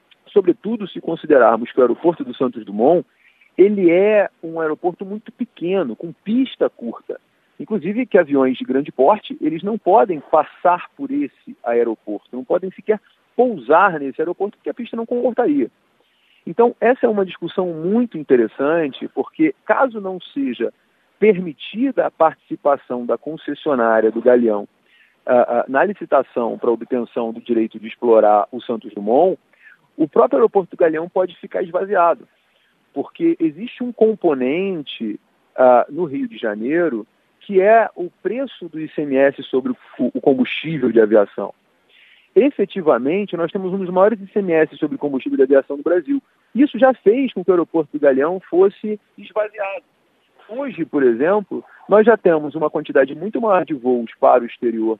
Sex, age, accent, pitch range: male, 40-59, Brazilian, 140-230 Hz